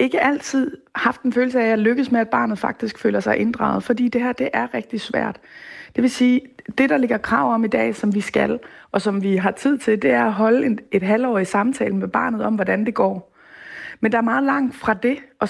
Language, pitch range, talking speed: Danish, 205-255 Hz, 245 wpm